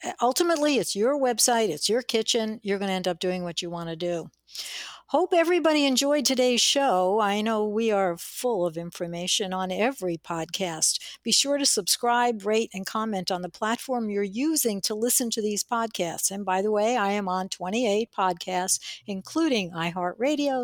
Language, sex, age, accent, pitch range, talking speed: English, female, 60-79, American, 185-240 Hz, 175 wpm